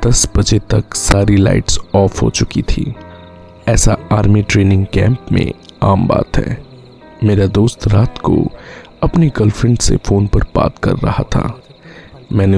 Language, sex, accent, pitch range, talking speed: Hindi, male, native, 95-115 Hz, 150 wpm